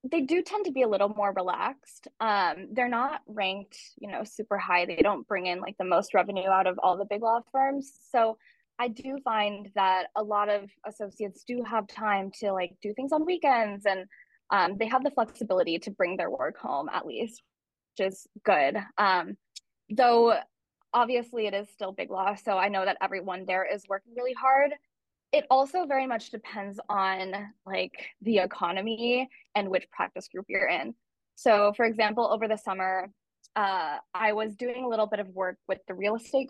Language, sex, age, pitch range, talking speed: English, female, 10-29, 190-240 Hz, 195 wpm